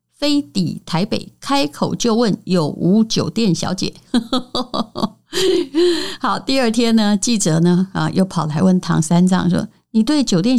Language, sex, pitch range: Chinese, female, 175-225 Hz